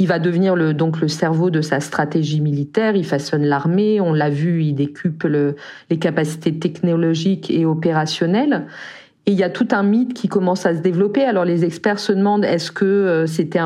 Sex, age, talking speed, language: female, 40-59, 195 wpm, French